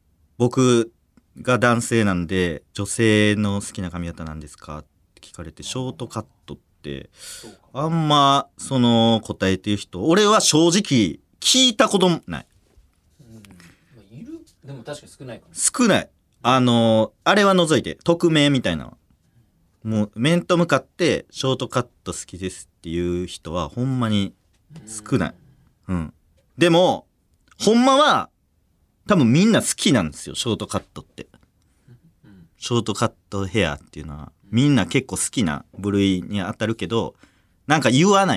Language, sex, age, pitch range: Japanese, male, 40-59, 95-155 Hz